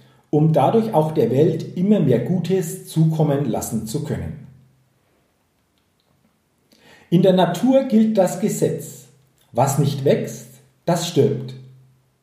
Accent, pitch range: German, 130-185 Hz